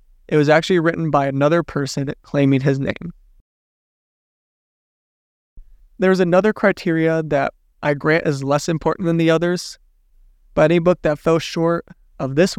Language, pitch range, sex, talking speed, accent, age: English, 135-165 Hz, male, 150 wpm, American, 20-39